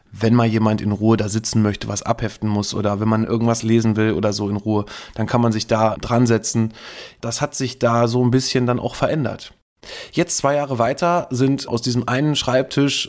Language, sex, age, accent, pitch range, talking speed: German, male, 20-39, German, 115-130 Hz, 215 wpm